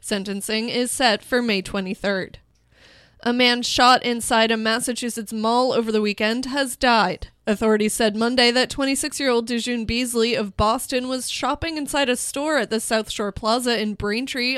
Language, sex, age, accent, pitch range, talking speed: English, female, 20-39, American, 215-255 Hz, 170 wpm